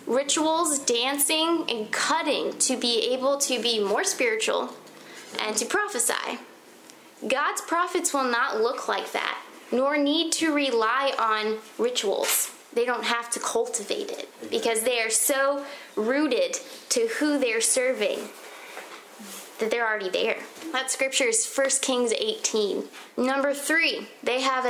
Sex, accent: female, American